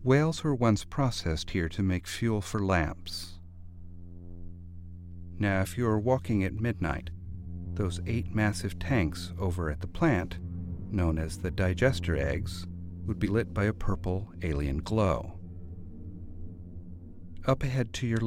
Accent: American